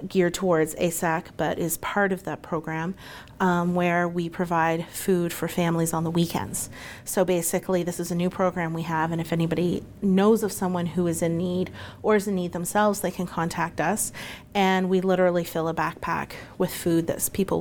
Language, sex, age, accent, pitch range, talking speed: English, female, 30-49, American, 165-195 Hz, 195 wpm